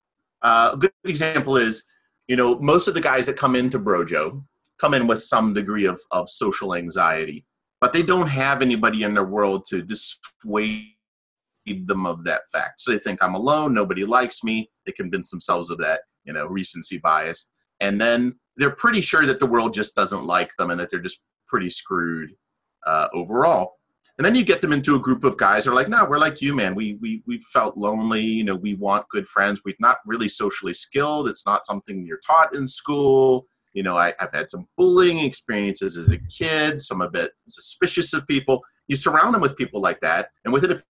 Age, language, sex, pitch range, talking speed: 30-49, English, male, 100-155 Hz, 210 wpm